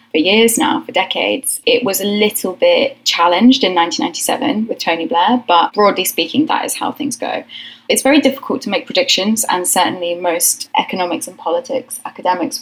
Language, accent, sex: English, British, female